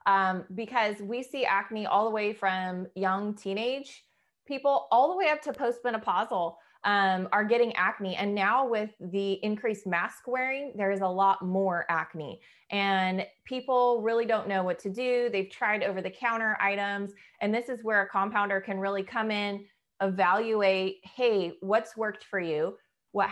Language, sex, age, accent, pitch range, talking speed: English, female, 20-39, American, 185-220 Hz, 170 wpm